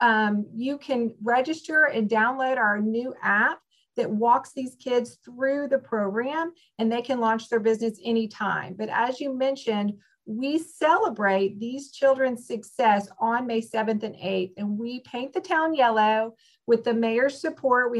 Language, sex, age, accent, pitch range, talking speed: English, female, 40-59, American, 215-265 Hz, 160 wpm